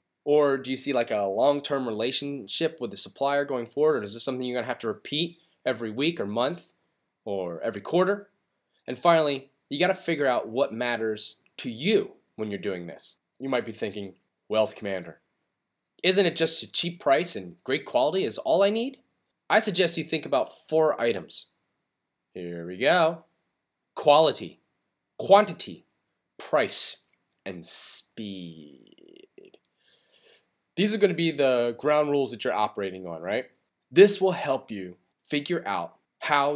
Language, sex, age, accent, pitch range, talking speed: English, male, 20-39, American, 115-170 Hz, 160 wpm